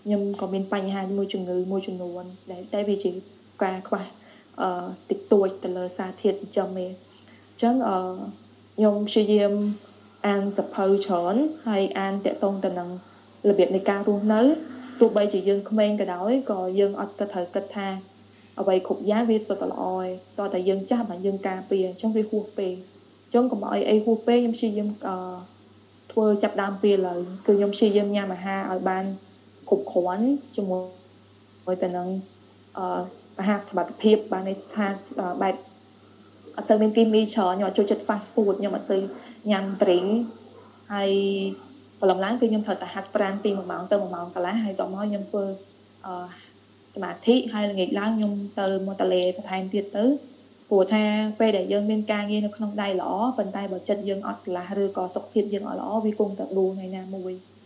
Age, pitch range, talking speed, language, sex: 20-39, 190-215 Hz, 90 wpm, English, female